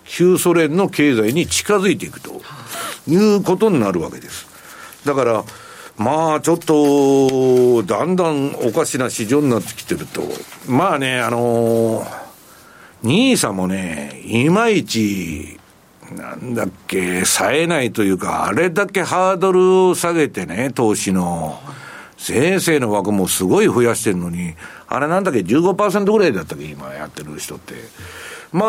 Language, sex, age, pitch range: Japanese, male, 60-79, 115-180 Hz